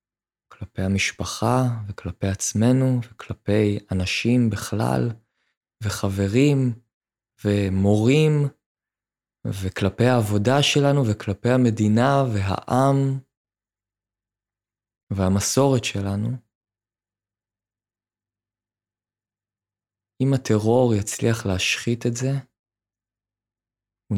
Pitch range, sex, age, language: 100-120 Hz, male, 20-39, Hebrew